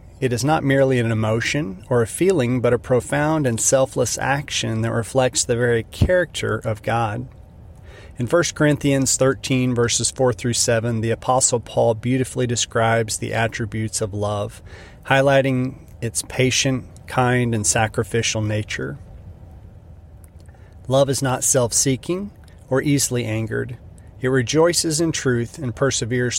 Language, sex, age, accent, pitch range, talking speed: English, male, 30-49, American, 110-130 Hz, 135 wpm